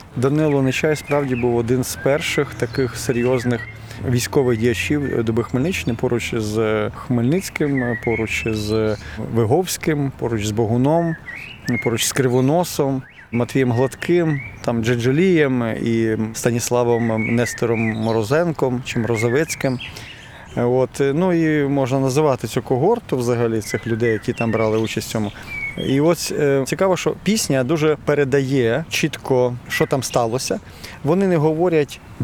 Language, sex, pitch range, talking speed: Ukrainian, male, 115-145 Hz, 115 wpm